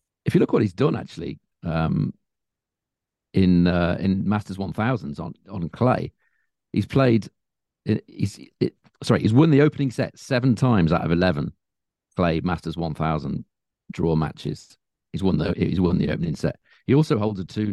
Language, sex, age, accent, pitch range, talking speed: English, male, 40-59, British, 85-125 Hz, 175 wpm